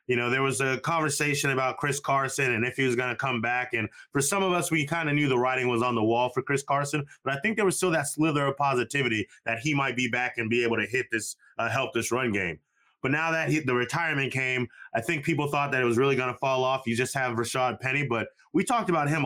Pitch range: 120-140 Hz